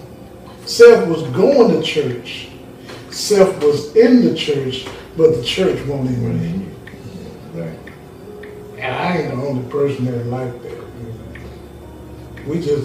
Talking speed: 150 wpm